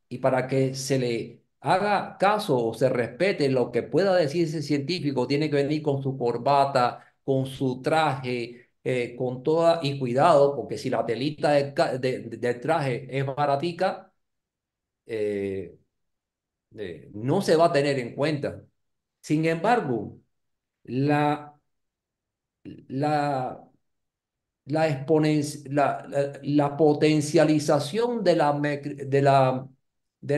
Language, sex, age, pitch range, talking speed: Spanish, male, 50-69, 120-150 Hz, 125 wpm